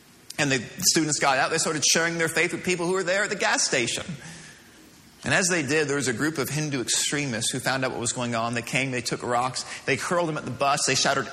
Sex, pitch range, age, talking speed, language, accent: male, 140-180 Hz, 30-49, 265 wpm, English, American